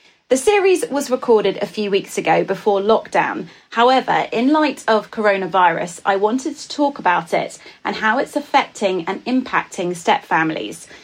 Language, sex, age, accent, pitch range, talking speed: English, female, 30-49, British, 195-245 Hz, 150 wpm